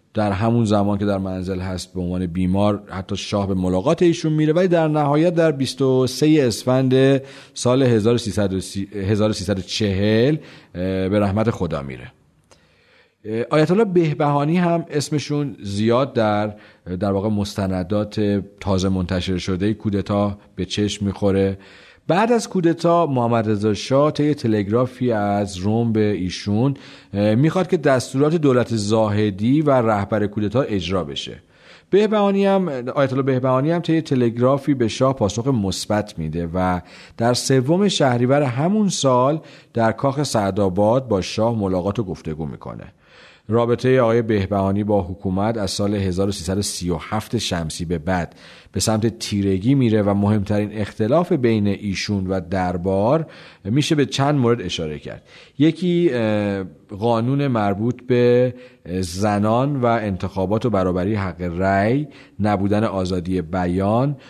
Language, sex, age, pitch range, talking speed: Persian, male, 40-59, 95-135 Hz, 130 wpm